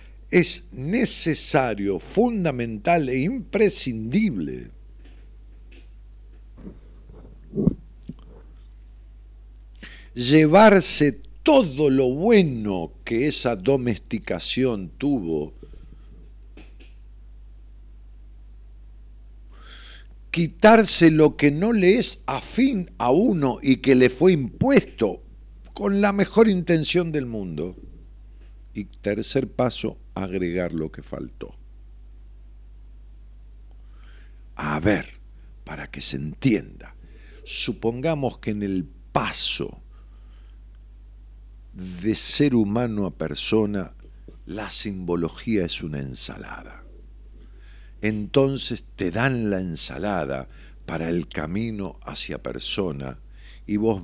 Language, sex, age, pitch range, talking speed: Spanish, male, 60-79, 90-145 Hz, 80 wpm